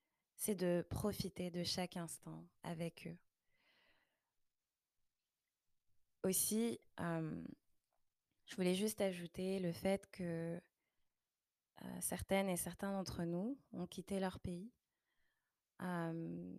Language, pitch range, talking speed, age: French, 170-195 Hz, 100 wpm, 20-39